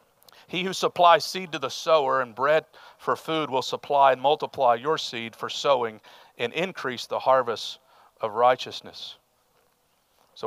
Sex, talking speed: male, 150 wpm